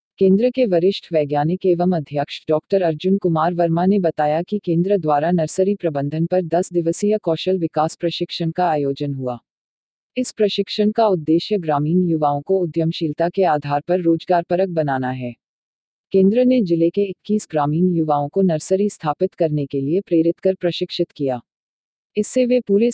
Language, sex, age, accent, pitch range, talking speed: Hindi, female, 40-59, native, 155-190 Hz, 155 wpm